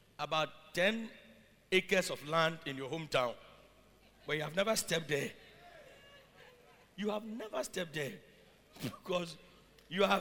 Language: English